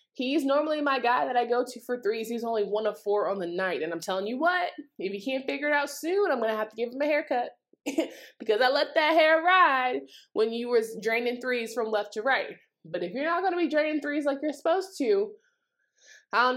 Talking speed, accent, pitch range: 250 wpm, American, 185-285 Hz